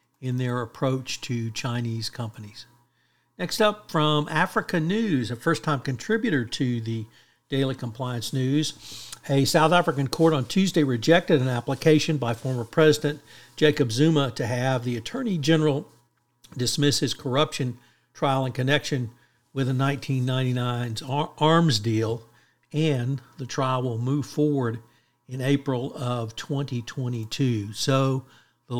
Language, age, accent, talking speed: English, 60-79, American, 125 wpm